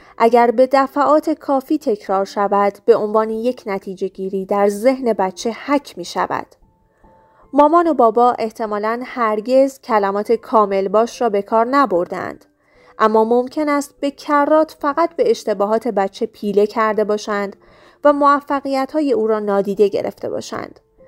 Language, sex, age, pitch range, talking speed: Persian, female, 30-49, 210-270 Hz, 135 wpm